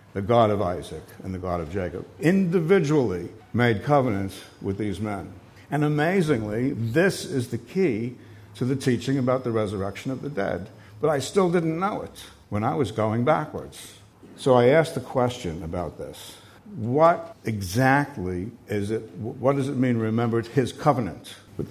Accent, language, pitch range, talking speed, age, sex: American, English, 100-130 Hz, 170 wpm, 60-79, male